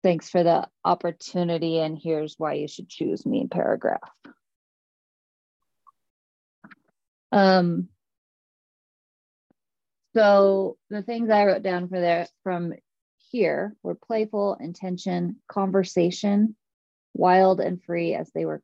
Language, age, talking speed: English, 30-49, 110 wpm